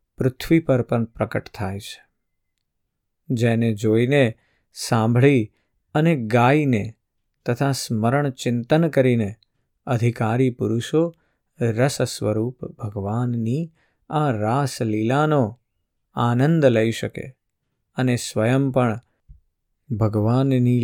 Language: Gujarati